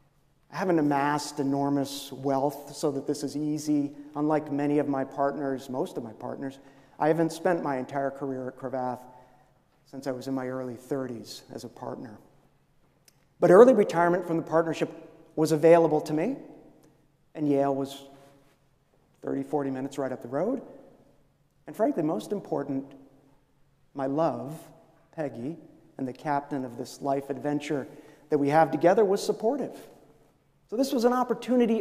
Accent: American